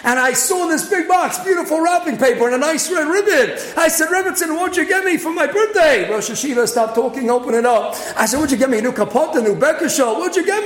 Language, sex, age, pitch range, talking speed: English, male, 40-59, 245-345 Hz, 280 wpm